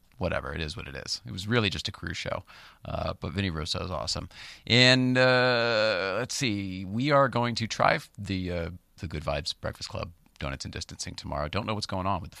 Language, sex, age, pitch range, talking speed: English, male, 40-59, 90-115 Hz, 220 wpm